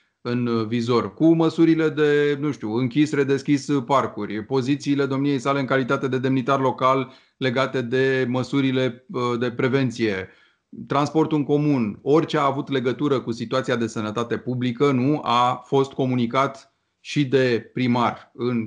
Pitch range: 120-145 Hz